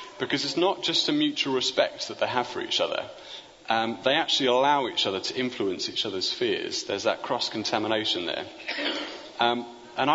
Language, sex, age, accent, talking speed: English, male, 30-49, British, 175 wpm